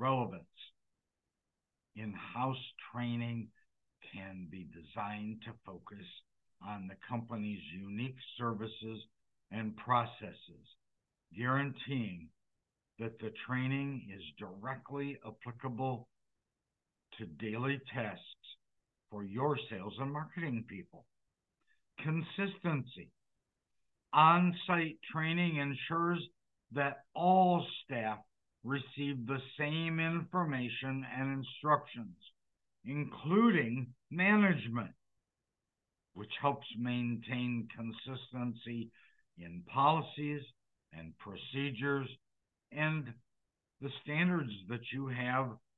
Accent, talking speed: American, 80 wpm